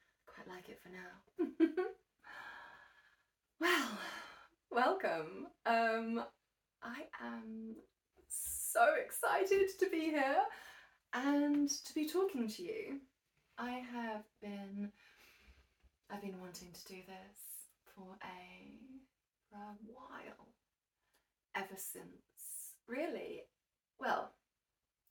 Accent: British